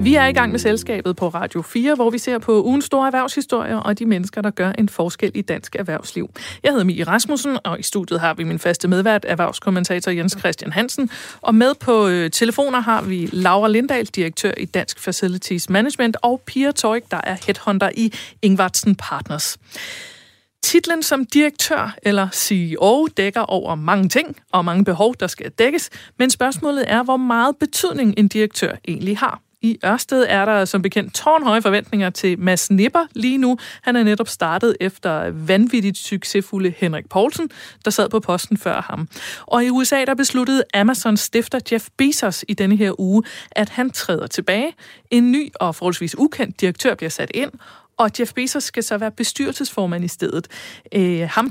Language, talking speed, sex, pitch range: Danish, 180 wpm, female, 190-250 Hz